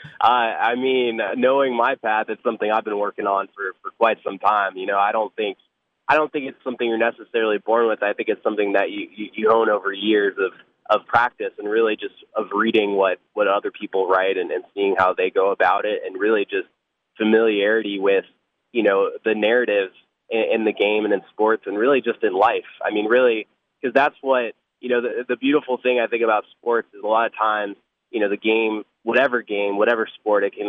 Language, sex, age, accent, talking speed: English, male, 20-39, American, 225 wpm